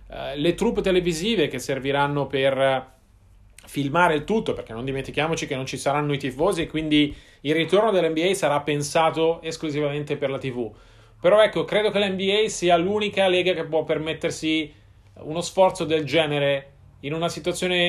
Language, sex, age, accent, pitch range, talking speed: Italian, male, 30-49, native, 140-175 Hz, 160 wpm